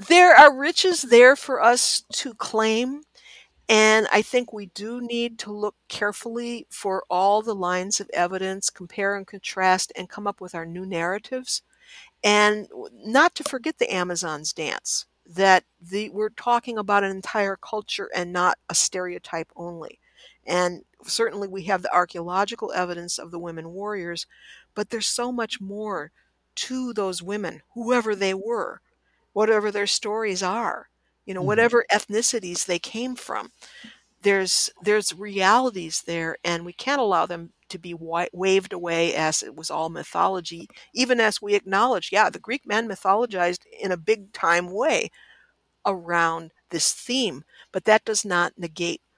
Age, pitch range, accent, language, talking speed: 60-79, 180-230 Hz, American, English, 155 wpm